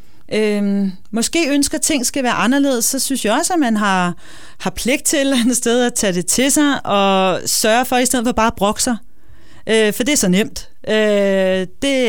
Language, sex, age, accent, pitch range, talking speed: Danish, female, 30-49, native, 205-265 Hz, 210 wpm